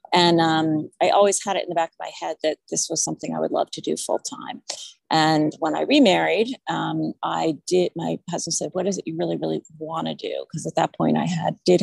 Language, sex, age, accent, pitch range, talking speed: English, female, 30-49, American, 160-185 Hz, 250 wpm